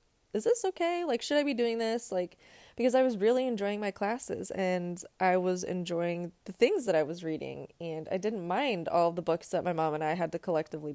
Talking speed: 230 wpm